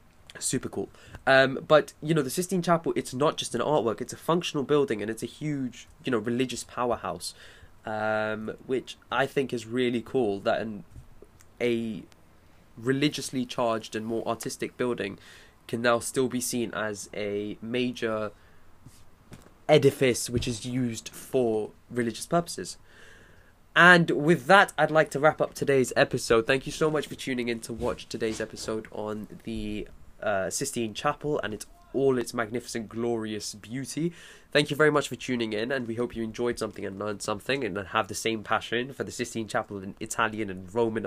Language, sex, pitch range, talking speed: English, male, 110-135 Hz, 170 wpm